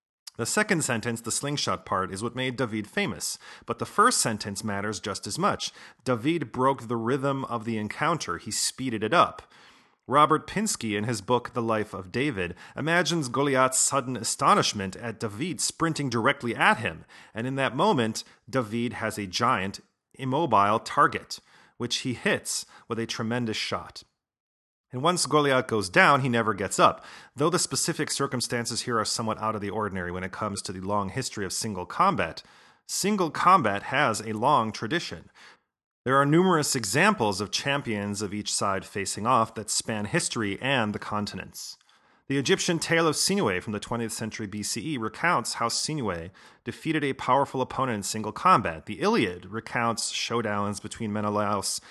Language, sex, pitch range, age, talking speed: English, male, 105-135 Hz, 30-49, 170 wpm